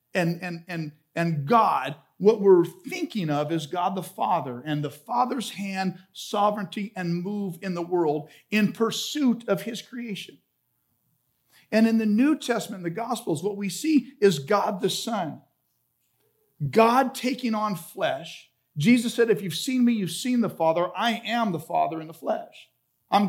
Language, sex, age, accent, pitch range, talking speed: English, male, 50-69, American, 185-235 Hz, 165 wpm